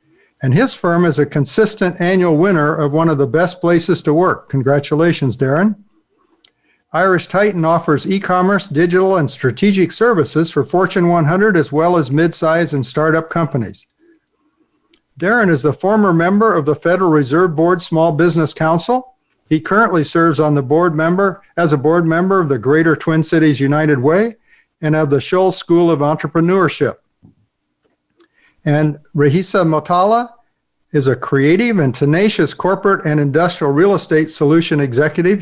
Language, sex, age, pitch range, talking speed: English, male, 60-79, 155-190 Hz, 150 wpm